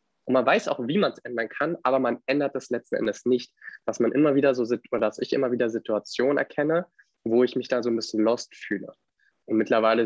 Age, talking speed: 20-39, 225 wpm